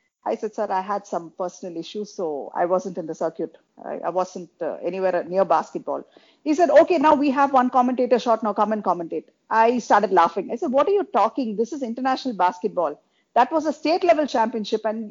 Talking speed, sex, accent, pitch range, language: 215 wpm, female, Indian, 195-255 Hz, English